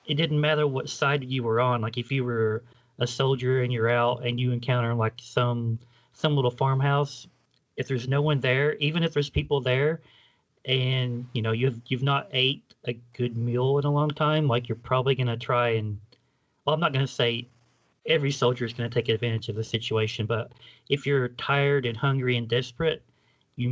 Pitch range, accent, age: 115-135 Hz, American, 30-49